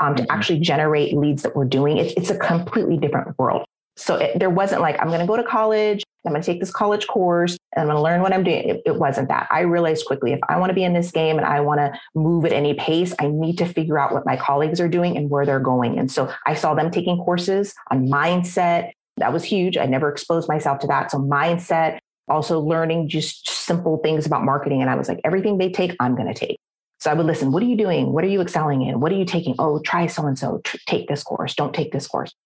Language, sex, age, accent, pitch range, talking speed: English, female, 30-49, American, 145-185 Hz, 265 wpm